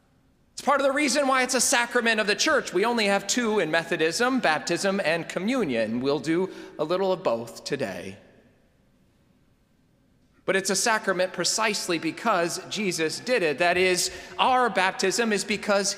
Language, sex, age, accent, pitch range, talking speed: English, male, 40-59, American, 160-215 Hz, 160 wpm